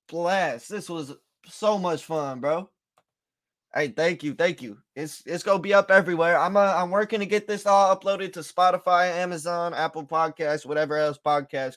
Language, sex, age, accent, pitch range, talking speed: English, male, 20-39, American, 160-205 Hz, 180 wpm